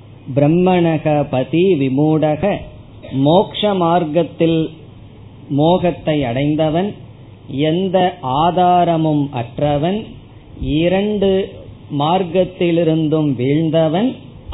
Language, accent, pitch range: Tamil, native, 130-180 Hz